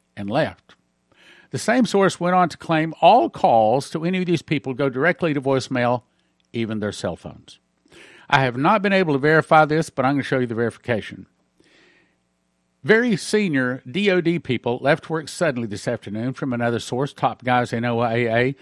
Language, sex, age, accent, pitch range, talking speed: English, male, 50-69, American, 115-165 Hz, 175 wpm